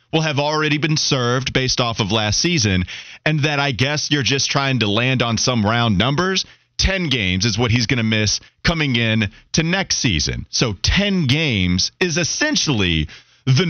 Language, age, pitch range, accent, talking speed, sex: English, 30-49, 110-160 Hz, American, 185 wpm, male